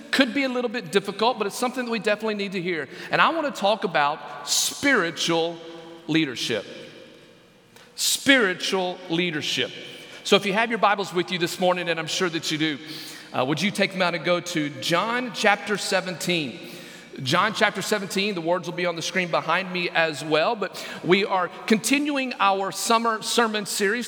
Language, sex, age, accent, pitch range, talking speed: English, male, 40-59, American, 165-215 Hz, 185 wpm